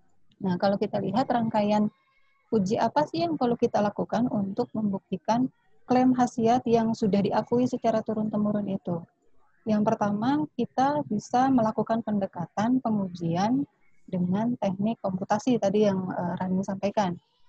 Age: 30-49